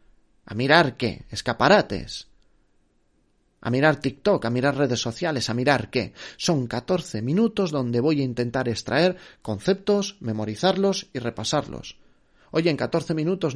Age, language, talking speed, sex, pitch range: 30-49, Spanish, 135 wpm, male, 120-170 Hz